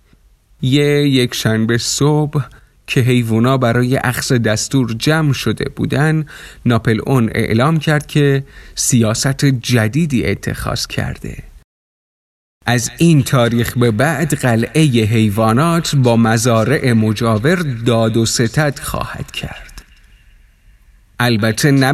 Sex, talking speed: male, 105 wpm